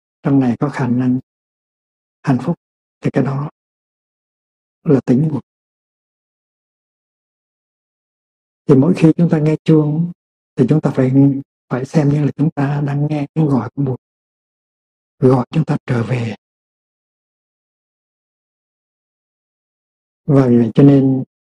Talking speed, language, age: 130 wpm, Vietnamese, 60-79